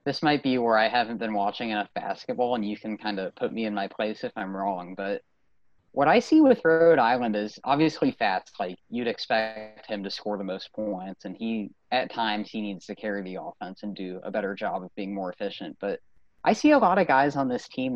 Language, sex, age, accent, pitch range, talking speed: English, male, 20-39, American, 105-120 Hz, 235 wpm